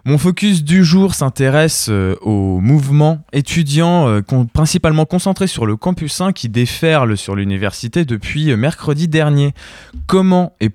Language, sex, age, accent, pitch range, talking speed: French, male, 20-39, French, 110-155 Hz, 130 wpm